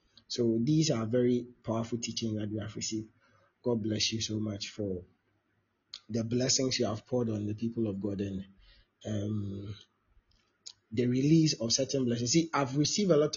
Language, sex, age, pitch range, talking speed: English, male, 30-49, 110-135 Hz, 170 wpm